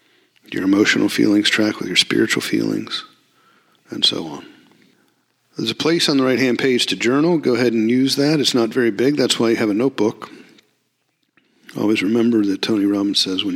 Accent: American